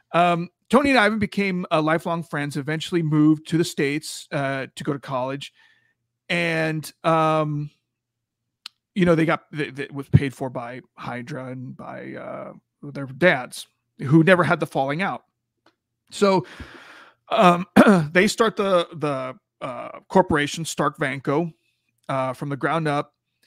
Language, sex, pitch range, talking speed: English, male, 140-180 Hz, 145 wpm